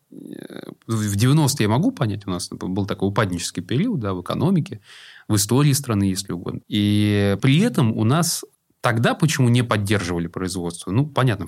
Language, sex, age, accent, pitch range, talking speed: Russian, male, 30-49, native, 100-130 Hz, 155 wpm